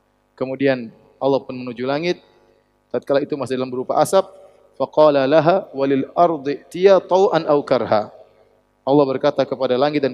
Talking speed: 135 wpm